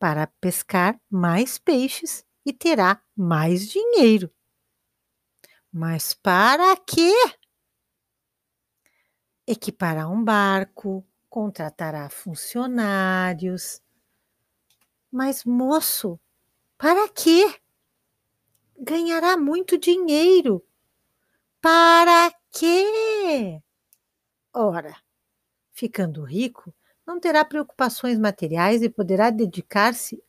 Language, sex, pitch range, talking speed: Portuguese, female, 175-280 Hz, 70 wpm